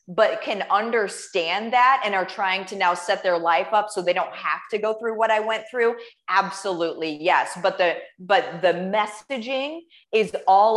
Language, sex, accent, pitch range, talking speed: English, female, American, 175-225 Hz, 185 wpm